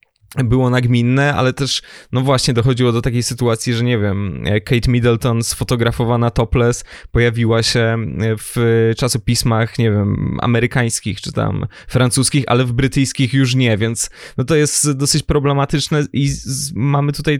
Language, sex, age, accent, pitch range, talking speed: Polish, male, 20-39, native, 115-135 Hz, 140 wpm